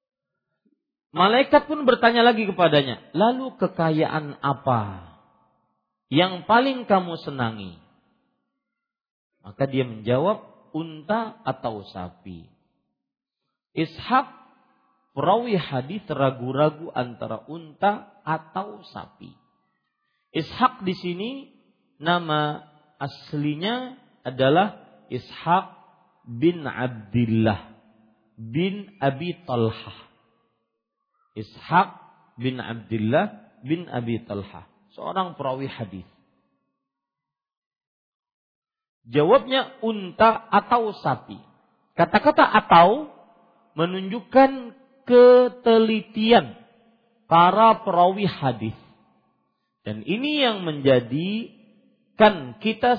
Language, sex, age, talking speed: Malay, male, 50-69, 70 wpm